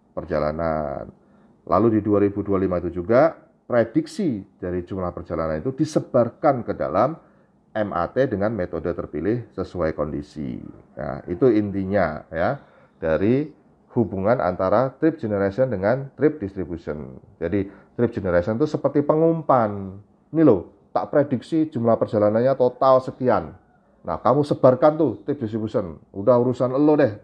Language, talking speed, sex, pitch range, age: Indonesian, 125 wpm, male, 95-140 Hz, 40-59